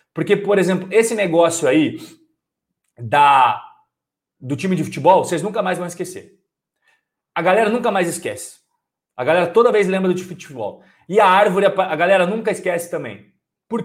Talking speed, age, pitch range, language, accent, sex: 165 wpm, 40-59, 180-245 Hz, Portuguese, Brazilian, male